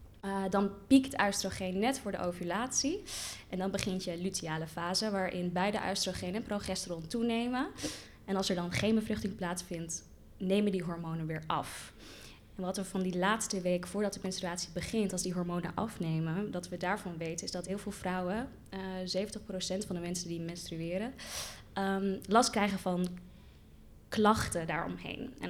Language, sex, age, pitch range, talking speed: Dutch, female, 20-39, 175-205 Hz, 165 wpm